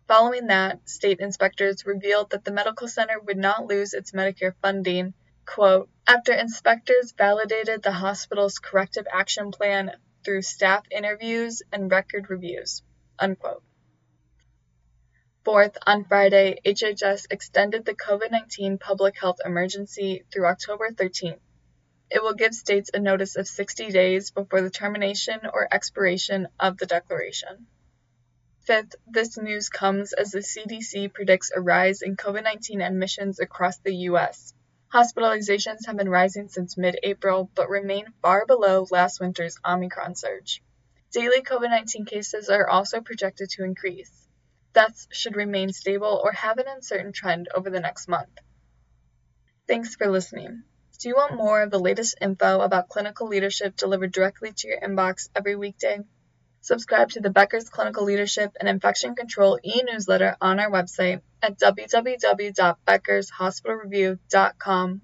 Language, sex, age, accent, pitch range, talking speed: English, female, 20-39, American, 185-210 Hz, 135 wpm